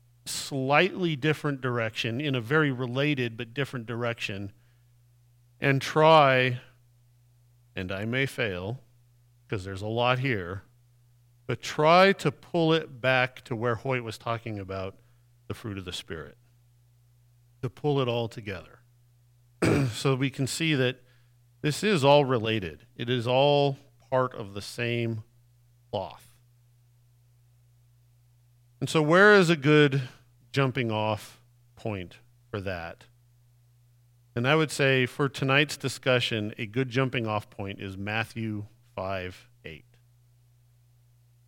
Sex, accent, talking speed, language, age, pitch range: male, American, 125 wpm, English, 50-69, 120-135 Hz